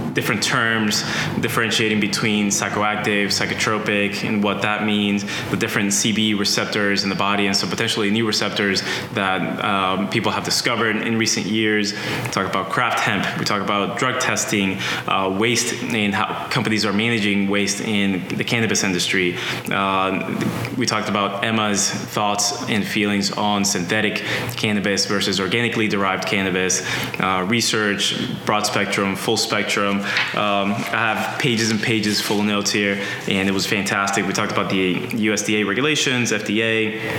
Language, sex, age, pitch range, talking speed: English, male, 20-39, 100-115 Hz, 150 wpm